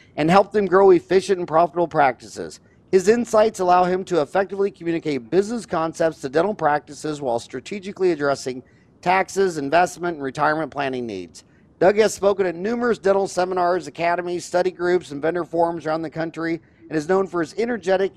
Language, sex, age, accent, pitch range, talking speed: English, male, 50-69, American, 160-190 Hz, 170 wpm